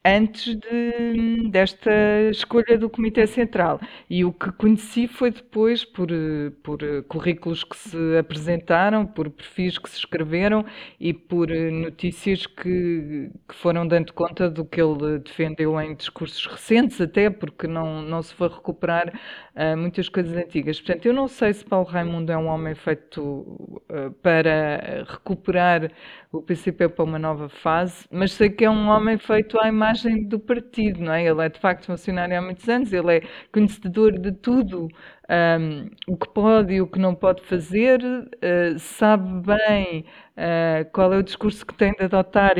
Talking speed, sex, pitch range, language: 160 wpm, female, 170-215 Hz, Portuguese